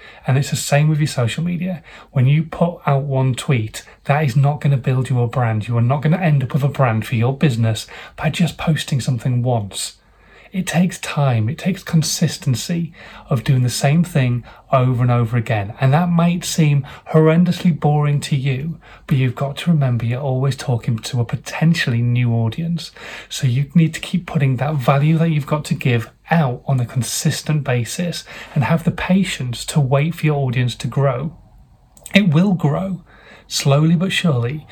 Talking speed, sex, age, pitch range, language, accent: 195 wpm, male, 30-49, 125-160 Hz, English, British